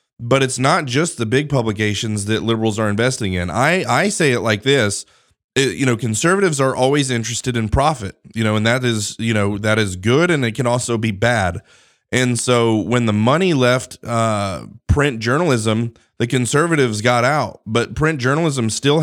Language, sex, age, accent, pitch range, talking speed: English, male, 30-49, American, 110-130 Hz, 185 wpm